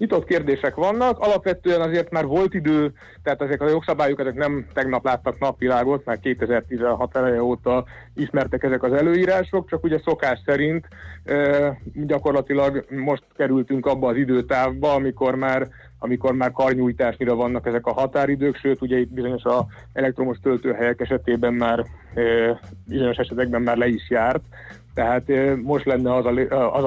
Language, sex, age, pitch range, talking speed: Hungarian, male, 30-49, 120-140 Hz, 145 wpm